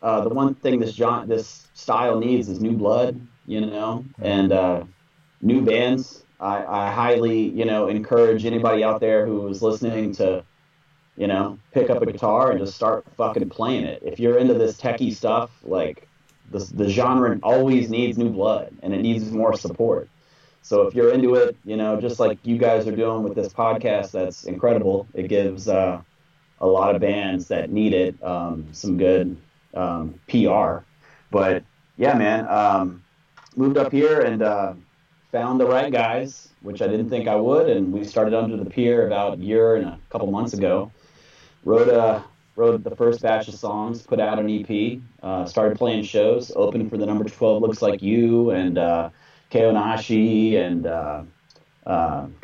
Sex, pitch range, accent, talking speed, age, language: male, 100-120 Hz, American, 180 wpm, 30-49, English